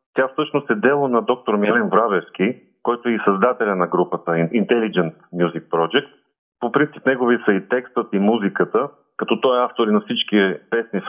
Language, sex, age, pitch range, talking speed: Bulgarian, male, 40-59, 95-125 Hz, 180 wpm